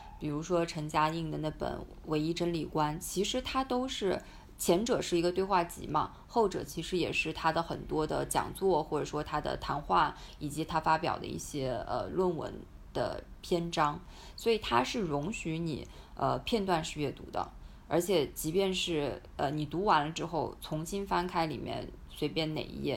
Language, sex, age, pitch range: Chinese, female, 20-39, 150-175 Hz